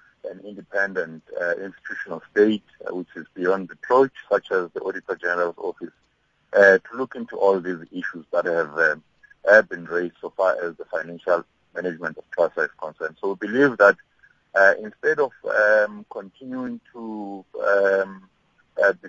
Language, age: English, 50-69